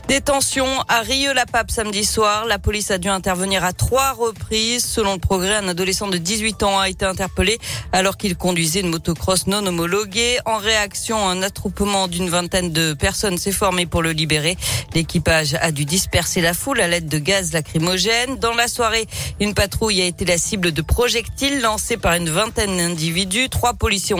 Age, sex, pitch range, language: 40-59, female, 170-215 Hz, French